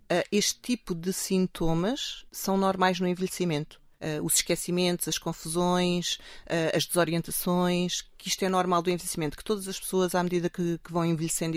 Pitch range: 155-180 Hz